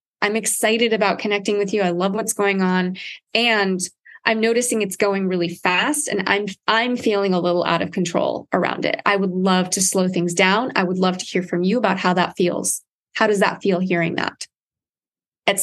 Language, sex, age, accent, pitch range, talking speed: English, female, 20-39, American, 190-230 Hz, 205 wpm